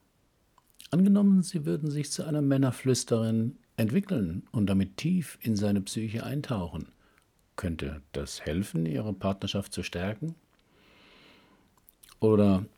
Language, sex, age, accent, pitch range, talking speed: German, male, 50-69, German, 90-115 Hz, 110 wpm